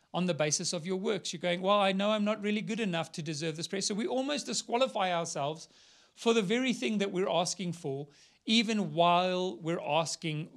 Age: 40-59